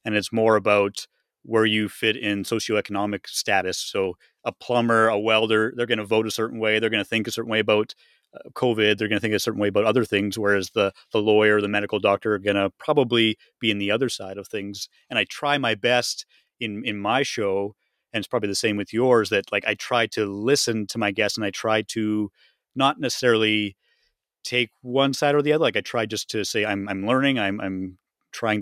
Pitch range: 100-120 Hz